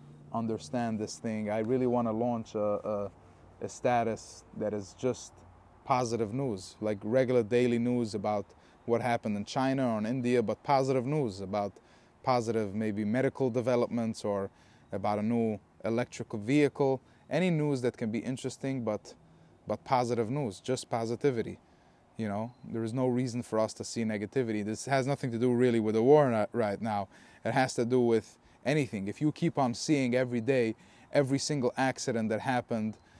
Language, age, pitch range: English, 20-39, 110-130 Hz